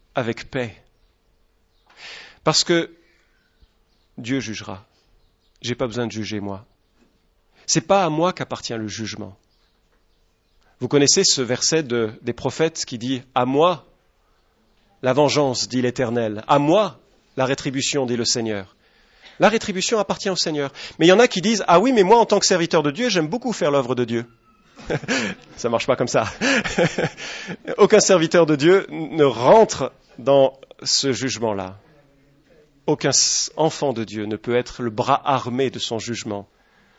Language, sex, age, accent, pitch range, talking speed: English, male, 40-59, French, 115-170 Hz, 155 wpm